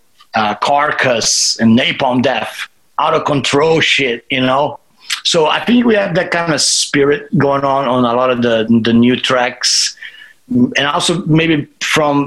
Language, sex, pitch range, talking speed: English, male, 120-145 Hz, 165 wpm